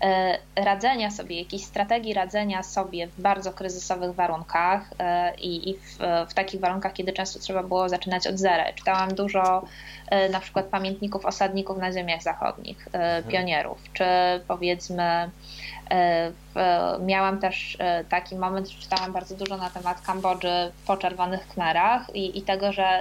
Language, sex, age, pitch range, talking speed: Polish, female, 20-39, 175-195 Hz, 140 wpm